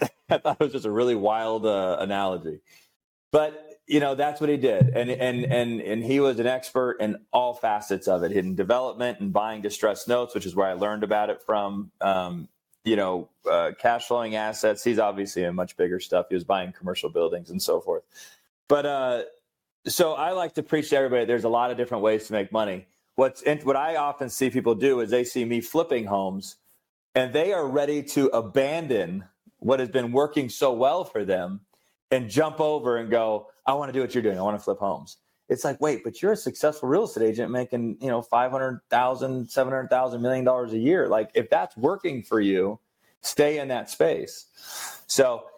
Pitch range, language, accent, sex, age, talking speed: 110-140 Hz, English, American, male, 30-49, 205 wpm